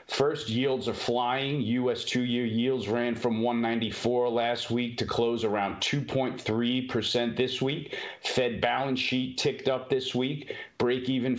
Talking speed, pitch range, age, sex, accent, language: 135 wpm, 120-130 Hz, 40-59, male, American, English